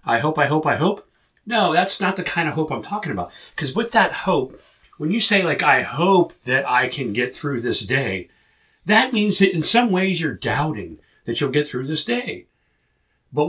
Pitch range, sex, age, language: 135-180 Hz, male, 50-69, English